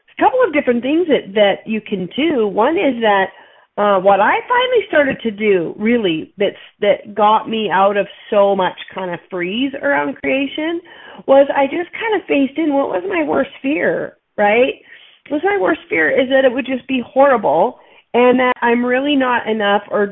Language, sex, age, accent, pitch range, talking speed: English, female, 40-59, American, 205-290 Hz, 195 wpm